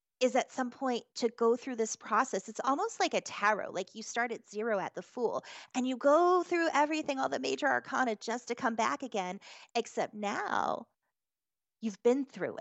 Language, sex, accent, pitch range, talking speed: English, female, American, 205-245 Hz, 195 wpm